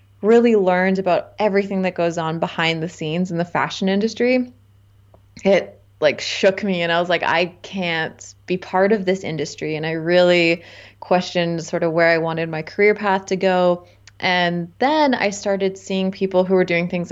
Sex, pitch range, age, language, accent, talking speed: female, 165-190 Hz, 20-39, Czech, American, 185 wpm